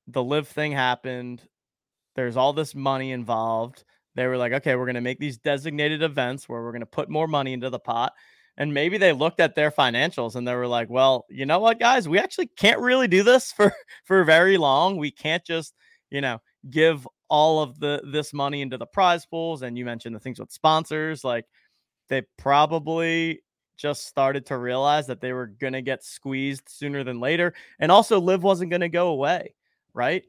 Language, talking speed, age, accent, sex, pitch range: English, 205 wpm, 20-39, American, male, 130-165 Hz